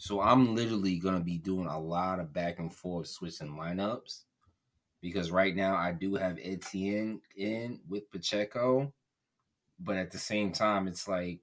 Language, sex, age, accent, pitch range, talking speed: English, male, 20-39, American, 85-105 Hz, 165 wpm